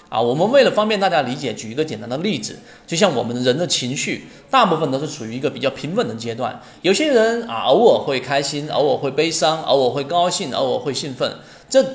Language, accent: Chinese, native